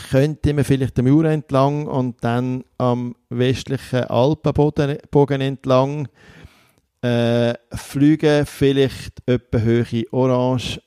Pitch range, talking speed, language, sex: 120-145 Hz, 100 wpm, German, male